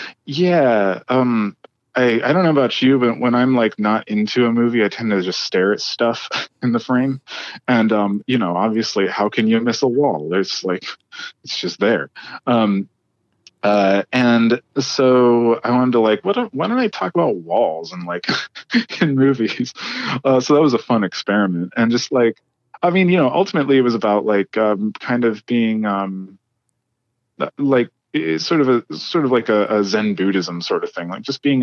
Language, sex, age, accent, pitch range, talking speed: English, male, 30-49, American, 110-135 Hz, 195 wpm